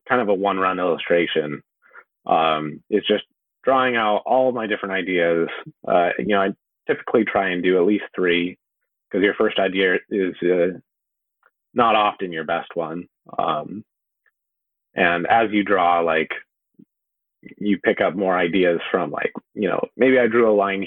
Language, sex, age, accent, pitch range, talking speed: English, male, 30-49, American, 90-110 Hz, 165 wpm